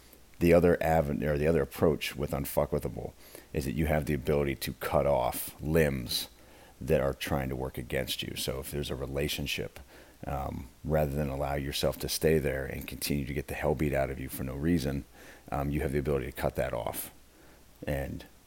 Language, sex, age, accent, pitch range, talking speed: English, male, 40-59, American, 70-80 Hz, 200 wpm